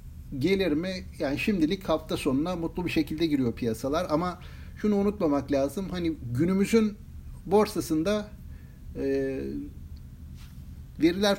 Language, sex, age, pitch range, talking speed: Turkish, male, 60-79, 125-200 Hz, 105 wpm